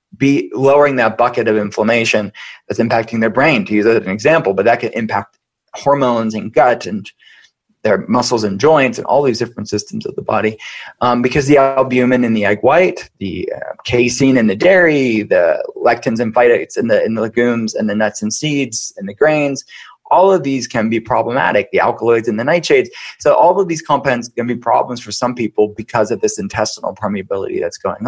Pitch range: 115-140 Hz